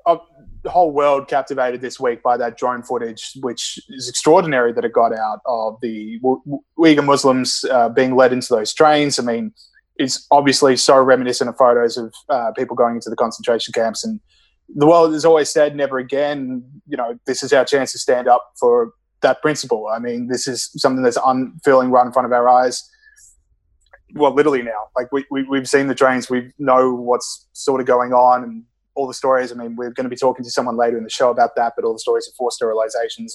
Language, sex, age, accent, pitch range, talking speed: English, male, 20-39, Australian, 120-145 Hz, 210 wpm